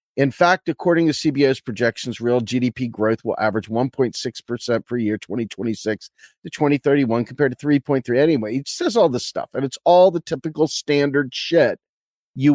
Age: 40-59